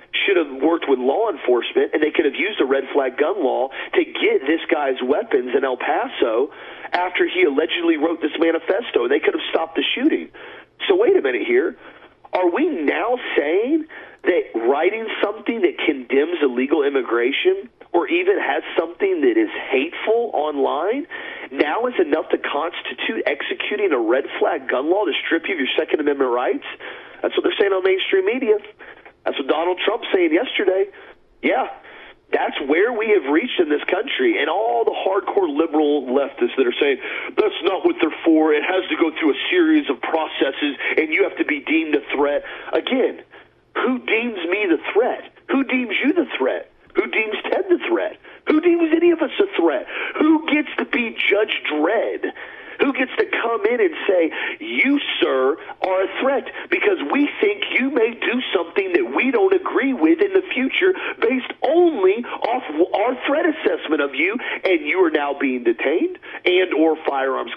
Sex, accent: male, American